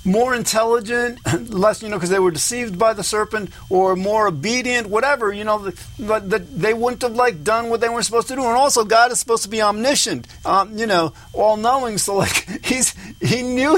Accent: American